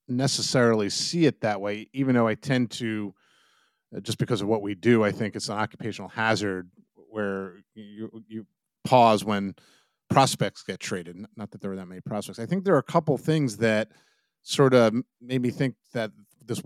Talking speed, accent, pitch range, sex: 185 wpm, American, 100-125 Hz, male